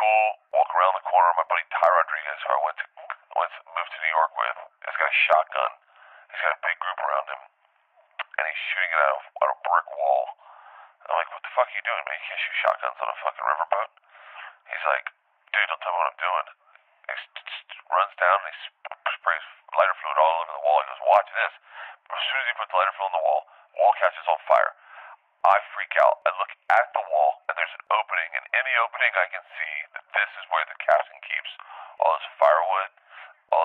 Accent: American